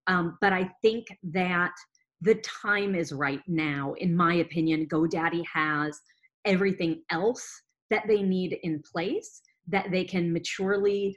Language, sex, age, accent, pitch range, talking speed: English, female, 30-49, American, 160-205 Hz, 140 wpm